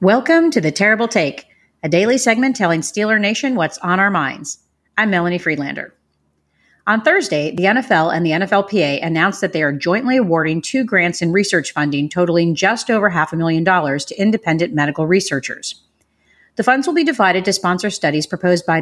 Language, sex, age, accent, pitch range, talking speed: English, female, 40-59, American, 165-215 Hz, 180 wpm